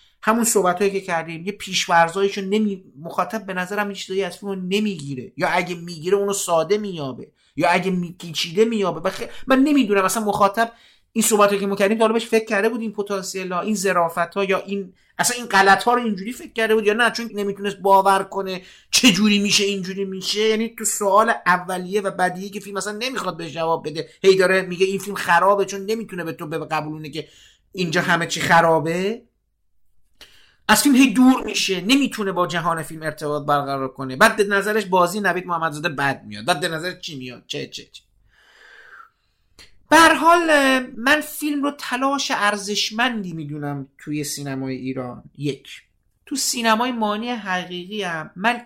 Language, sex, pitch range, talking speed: Persian, male, 165-215 Hz, 175 wpm